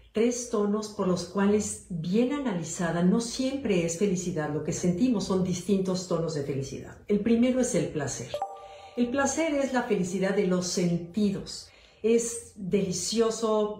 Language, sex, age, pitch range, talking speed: Spanish, female, 50-69, 180-215 Hz, 150 wpm